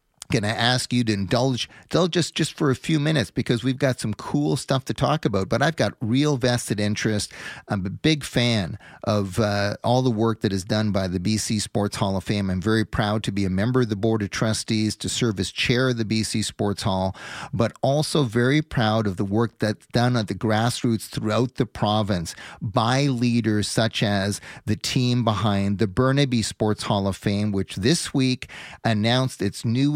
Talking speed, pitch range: 205 wpm, 105-130 Hz